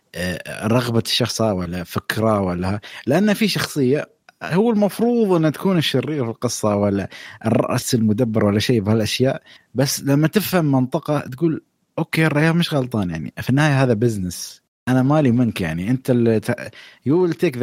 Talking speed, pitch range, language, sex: 145 wpm, 100-140 Hz, Arabic, male